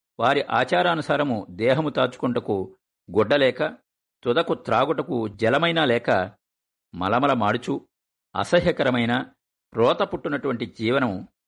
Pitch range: 95-140 Hz